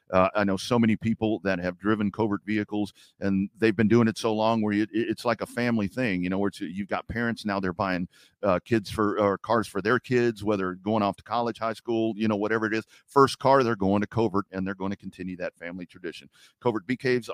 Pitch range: 100-130 Hz